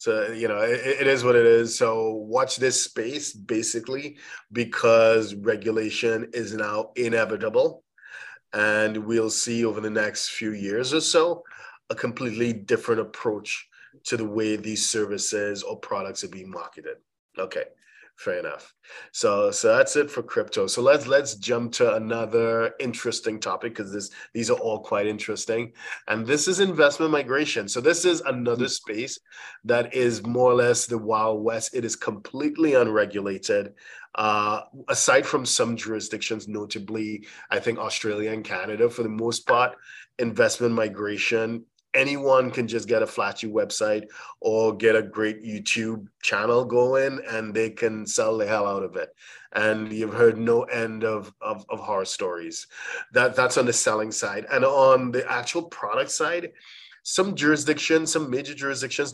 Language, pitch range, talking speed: English, 110-150 Hz, 155 wpm